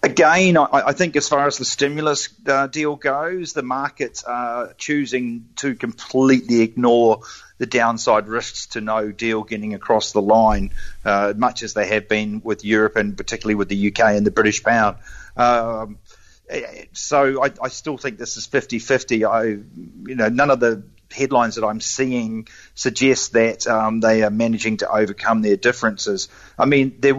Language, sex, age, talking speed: English, male, 40-59, 165 wpm